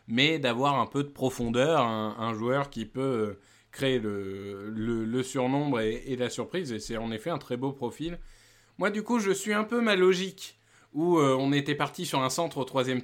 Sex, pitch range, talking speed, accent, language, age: male, 120-155 Hz, 215 wpm, French, French, 20-39